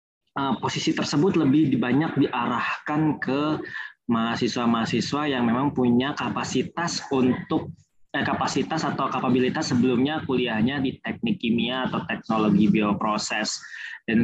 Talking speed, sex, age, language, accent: 105 wpm, male, 20-39, Indonesian, native